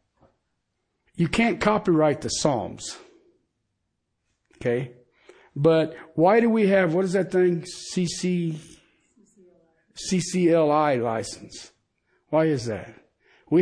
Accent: American